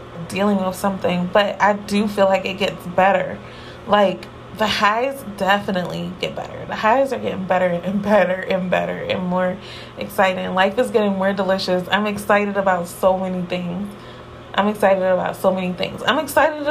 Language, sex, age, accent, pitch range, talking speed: English, female, 20-39, American, 195-250 Hz, 170 wpm